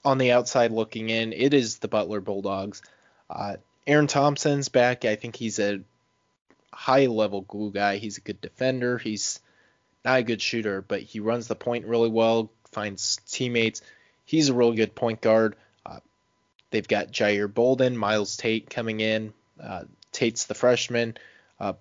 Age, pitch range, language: 20-39, 105-120 Hz, English